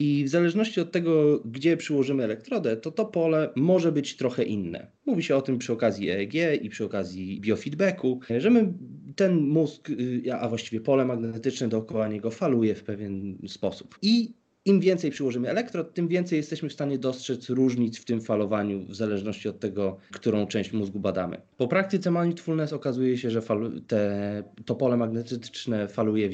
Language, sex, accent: Polish, male, native